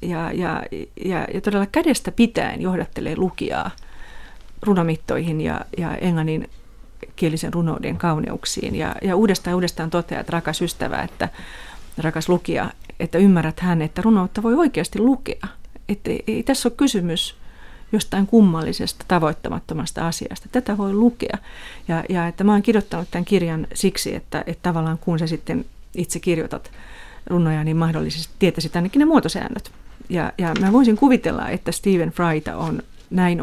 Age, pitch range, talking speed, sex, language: 30-49, 165-205 Hz, 145 wpm, female, Finnish